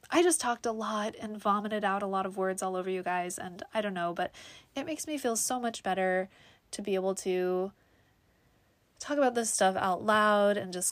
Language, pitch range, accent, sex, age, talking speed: English, 185-235 Hz, American, female, 20-39, 220 wpm